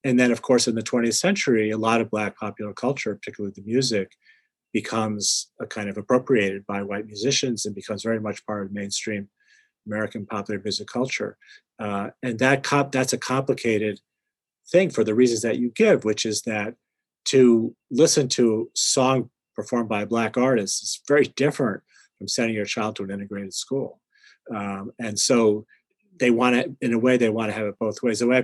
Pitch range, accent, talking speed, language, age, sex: 105-125 Hz, American, 190 wpm, English, 40-59, male